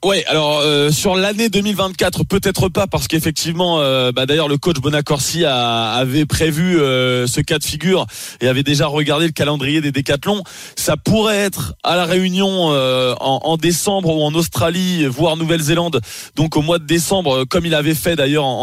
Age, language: 20-39, French